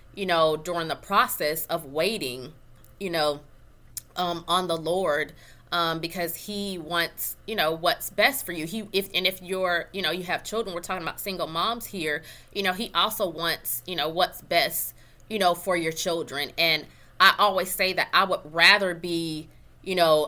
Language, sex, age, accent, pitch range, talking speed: English, female, 20-39, American, 155-190 Hz, 190 wpm